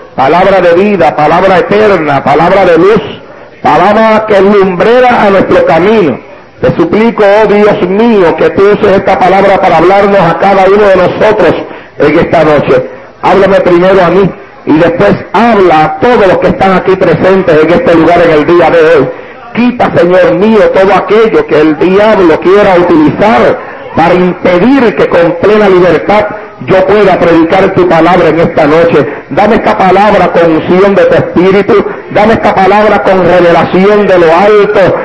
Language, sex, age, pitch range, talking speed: English, male, 50-69, 180-220 Hz, 165 wpm